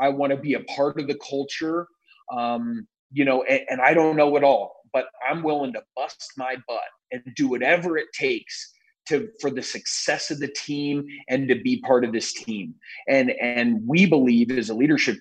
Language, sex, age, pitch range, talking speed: English, male, 30-49, 125-160 Hz, 205 wpm